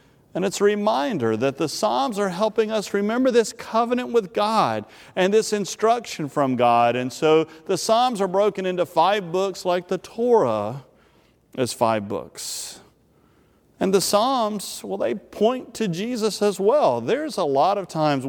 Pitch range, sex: 135-200 Hz, male